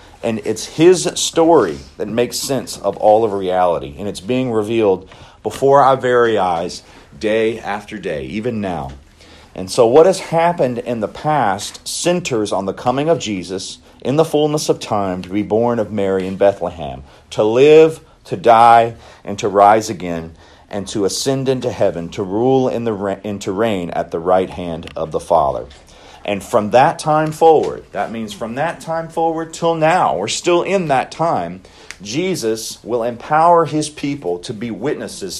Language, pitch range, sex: English, 100-140 Hz, male